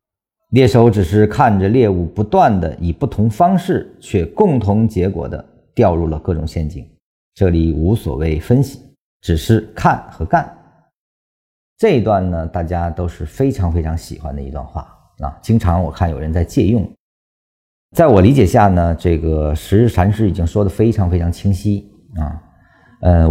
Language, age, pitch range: Chinese, 50-69, 85-115 Hz